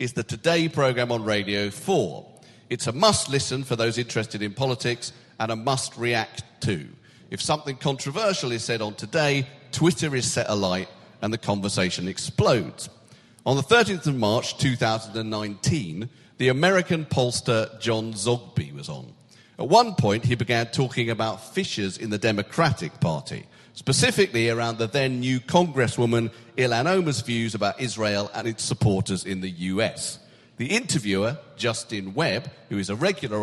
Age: 40-59